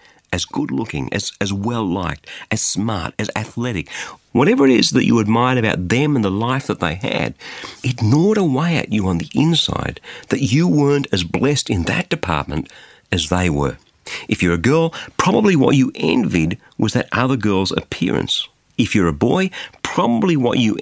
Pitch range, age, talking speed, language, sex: 95-145 Hz, 50-69, 180 wpm, English, male